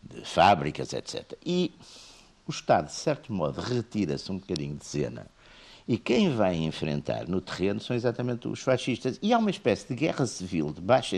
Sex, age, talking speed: male, 50-69, 175 wpm